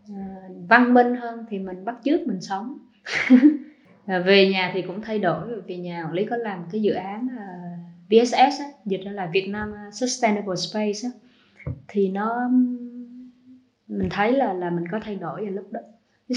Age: 20-39